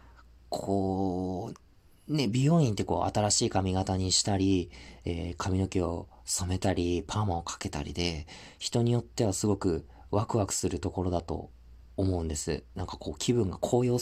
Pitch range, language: 85-115 Hz, Japanese